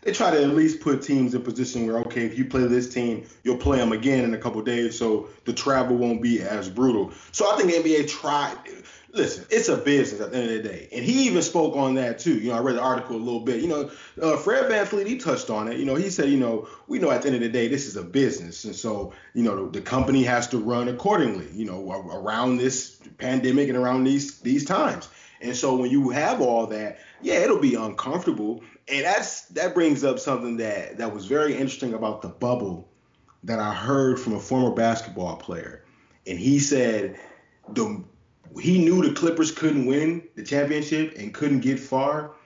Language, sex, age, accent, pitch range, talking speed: English, male, 20-39, American, 120-145 Hz, 230 wpm